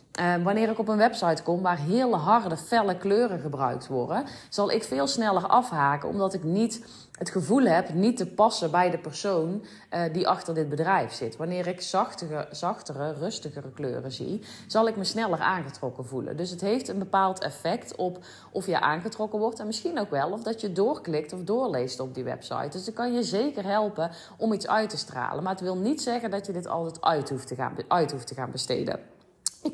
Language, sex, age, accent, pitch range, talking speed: Dutch, female, 30-49, Dutch, 155-205 Hz, 210 wpm